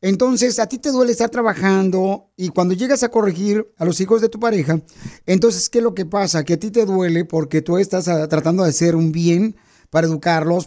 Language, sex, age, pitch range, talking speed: Spanish, male, 40-59, 170-225 Hz, 220 wpm